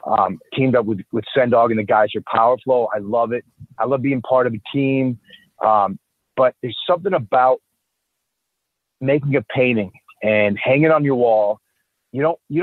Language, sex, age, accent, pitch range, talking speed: English, male, 40-59, American, 115-140 Hz, 180 wpm